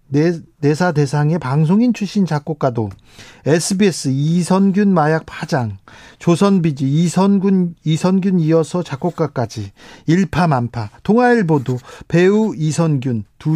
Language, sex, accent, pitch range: Korean, male, native, 145-210 Hz